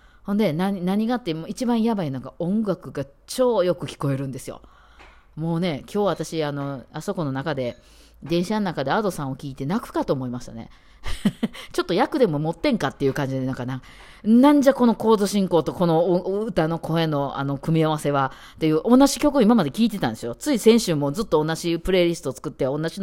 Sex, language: female, Japanese